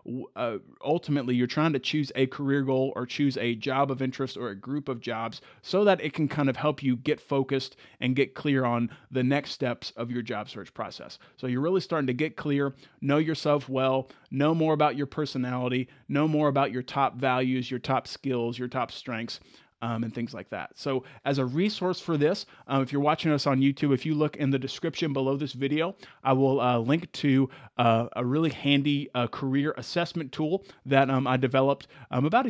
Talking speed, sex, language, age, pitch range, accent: 210 wpm, male, English, 30-49, 125-145 Hz, American